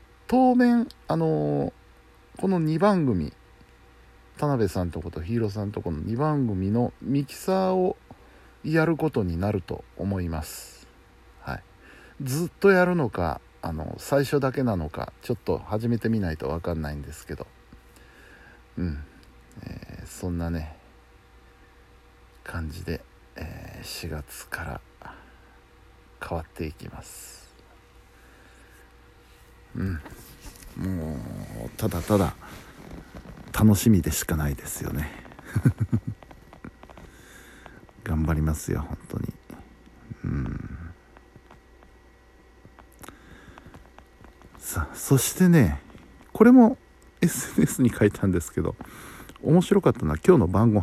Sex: male